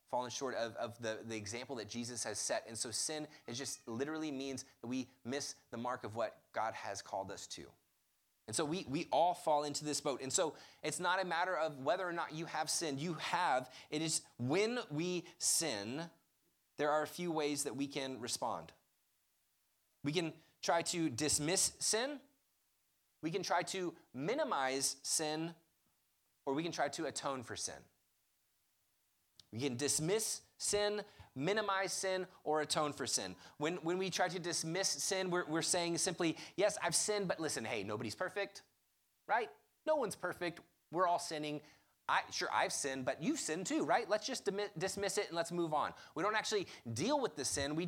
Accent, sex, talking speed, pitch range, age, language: American, male, 190 wpm, 135-185 Hz, 30-49, English